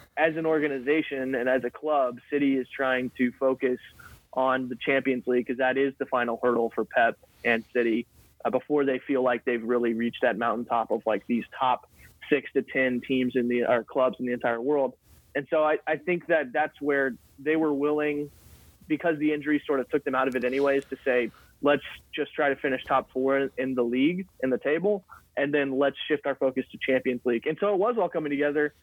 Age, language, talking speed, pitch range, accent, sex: 30-49, English, 220 wpm, 130-155 Hz, American, male